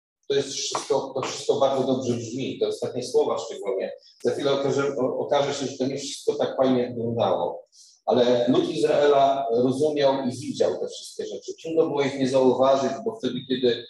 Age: 40-59